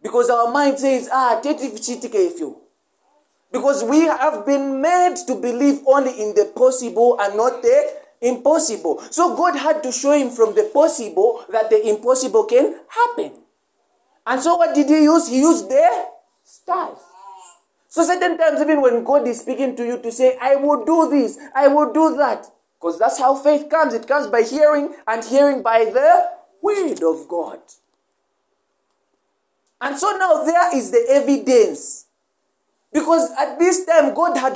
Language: English